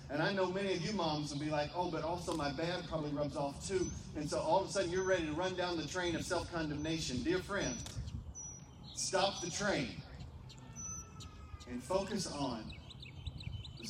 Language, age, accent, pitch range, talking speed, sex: English, 40-59, American, 115-160 Hz, 185 wpm, male